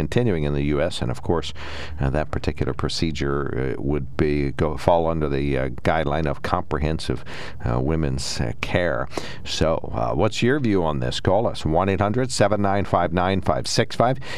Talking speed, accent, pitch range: 165 wpm, American, 75-95 Hz